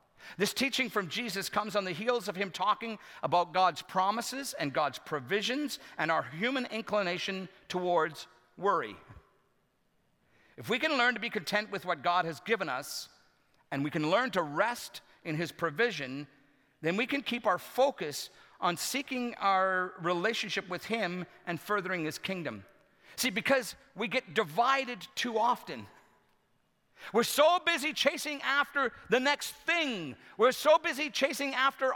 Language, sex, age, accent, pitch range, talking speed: English, male, 50-69, American, 175-255 Hz, 150 wpm